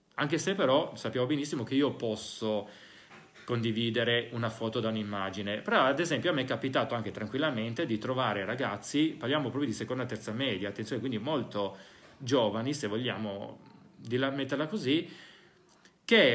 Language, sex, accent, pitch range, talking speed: Italian, male, native, 105-140 Hz, 155 wpm